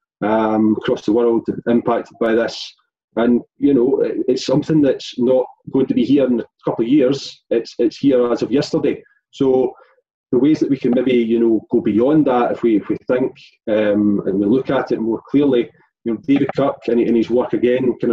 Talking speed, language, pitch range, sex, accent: 210 wpm, English, 115-140 Hz, male, British